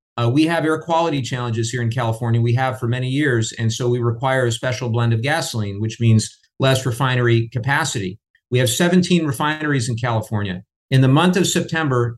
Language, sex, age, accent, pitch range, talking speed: English, male, 50-69, American, 120-150 Hz, 190 wpm